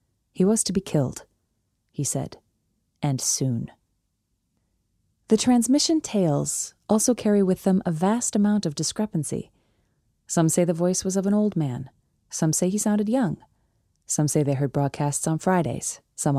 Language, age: English, 30-49